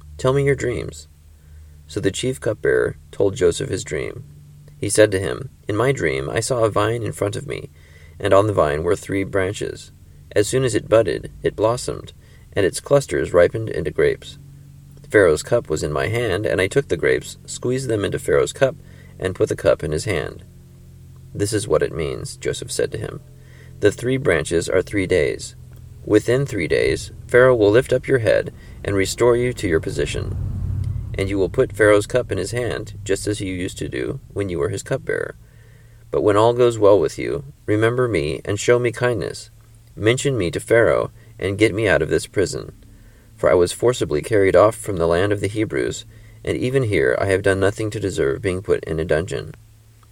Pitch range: 100-125 Hz